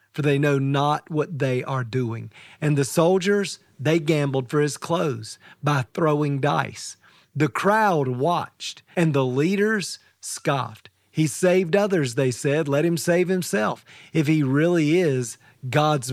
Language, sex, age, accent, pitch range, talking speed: English, male, 40-59, American, 140-185 Hz, 150 wpm